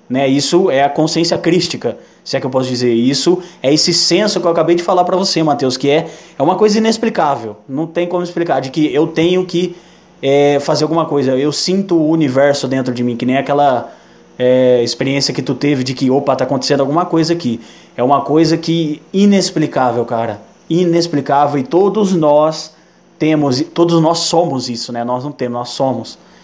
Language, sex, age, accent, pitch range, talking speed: Portuguese, male, 20-39, Brazilian, 130-165 Hz, 195 wpm